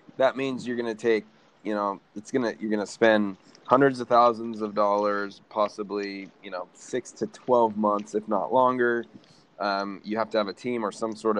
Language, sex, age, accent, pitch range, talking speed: English, male, 20-39, American, 100-110 Hz, 210 wpm